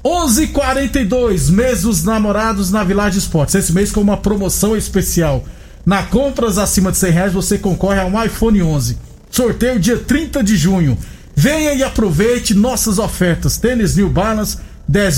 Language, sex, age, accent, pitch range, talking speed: Portuguese, male, 50-69, Brazilian, 180-220 Hz, 160 wpm